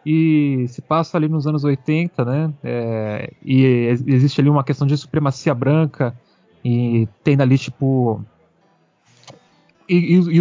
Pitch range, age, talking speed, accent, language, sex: 130-170 Hz, 20-39, 125 wpm, Brazilian, Portuguese, male